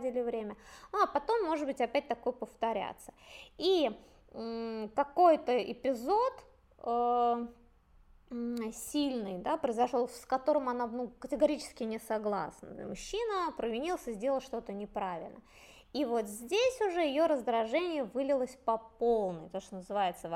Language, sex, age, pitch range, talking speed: Russian, female, 20-39, 225-310 Hz, 120 wpm